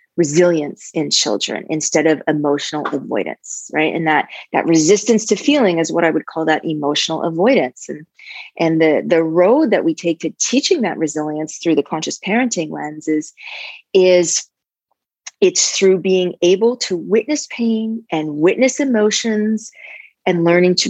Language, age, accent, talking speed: English, 30-49, American, 155 wpm